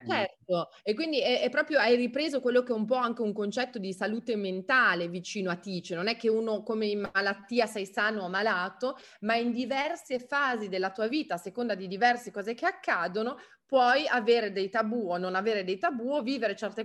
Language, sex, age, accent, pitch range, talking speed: Italian, female, 30-49, native, 190-245 Hz, 205 wpm